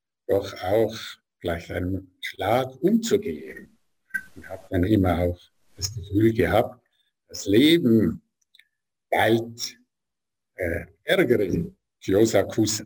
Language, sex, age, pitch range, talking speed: German, male, 60-79, 95-125 Hz, 95 wpm